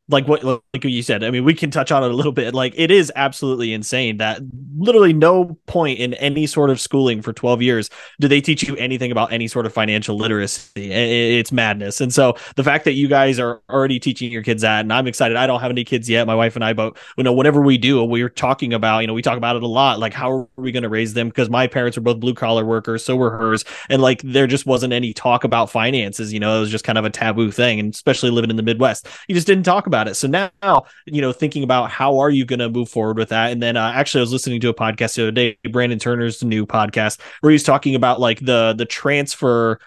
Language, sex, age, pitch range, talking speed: English, male, 20-39, 115-135 Hz, 270 wpm